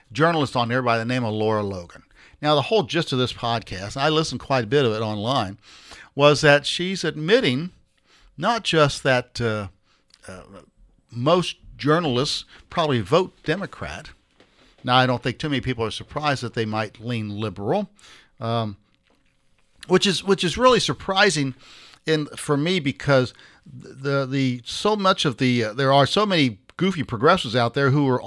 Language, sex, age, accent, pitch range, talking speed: English, male, 50-69, American, 120-170 Hz, 170 wpm